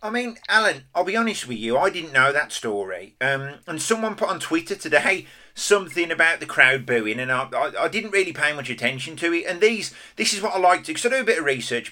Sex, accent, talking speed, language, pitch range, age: male, British, 260 wpm, English, 130-175 Hz, 40-59